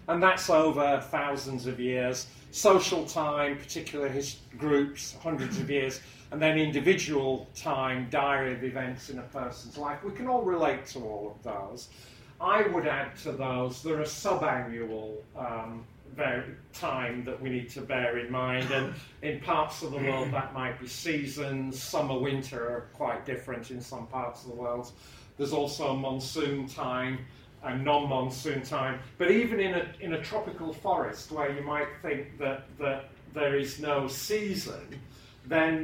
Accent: British